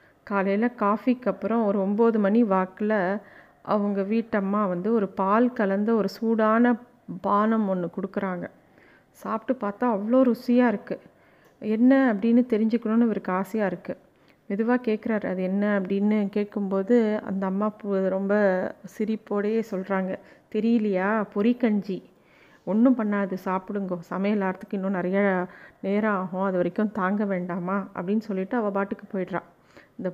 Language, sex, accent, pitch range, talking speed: Tamil, female, native, 190-220 Hz, 125 wpm